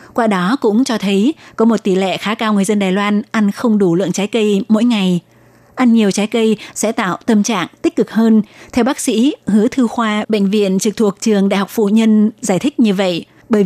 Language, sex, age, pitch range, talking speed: Vietnamese, female, 20-39, 195-230 Hz, 235 wpm